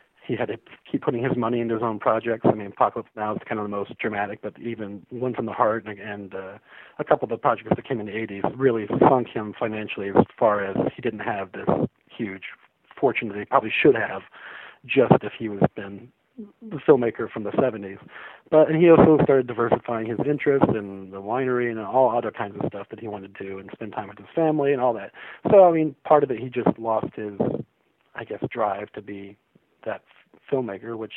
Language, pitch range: English, 105-130 Hz